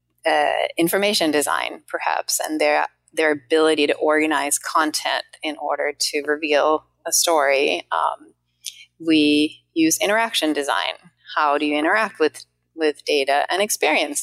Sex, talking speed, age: female, 130 wpm, 30-49